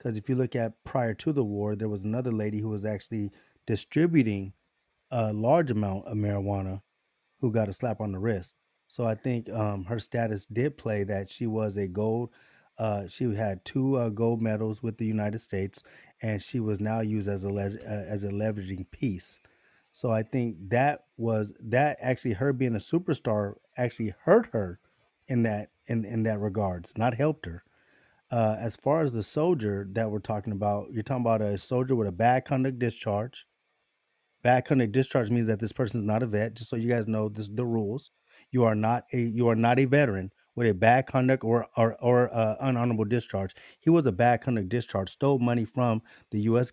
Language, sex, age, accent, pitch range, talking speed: English, male, 20-39, American, 105-125 Hz, 200 wpm